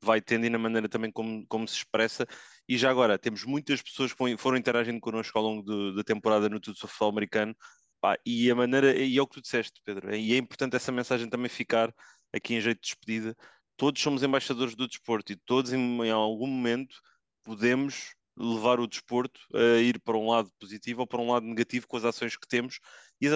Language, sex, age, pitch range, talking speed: English, male, 20-39, 115-130 Hz, 215 wpm